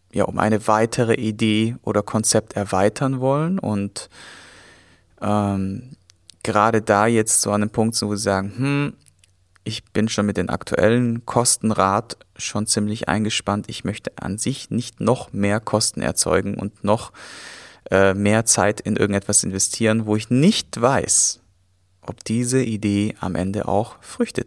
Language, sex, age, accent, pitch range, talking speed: German, male, 30-49, German, 95-115 Hz, 145 wpm